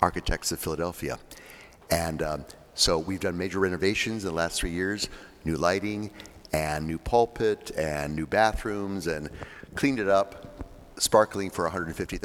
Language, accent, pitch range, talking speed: English, American, 85-105 Hz, 145 wpm